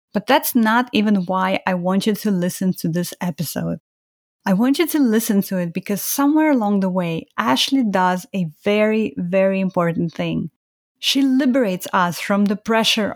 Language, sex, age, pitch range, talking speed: English, female, 30-49, 185-240 Hz, 175 wpm